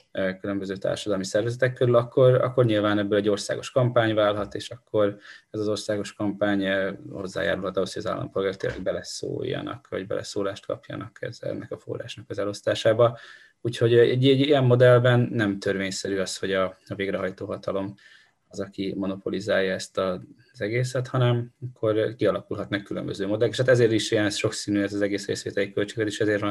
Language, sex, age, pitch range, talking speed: Hungarian, male, 20-39, 100-115 Hz, 160 wpm